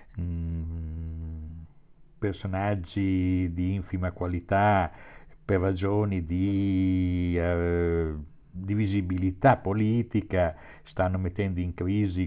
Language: Italian